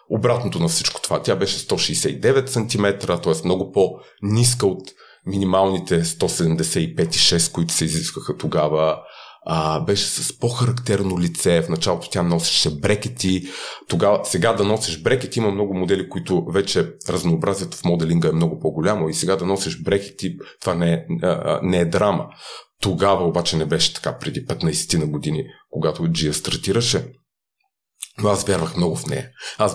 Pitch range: 85-105 Hz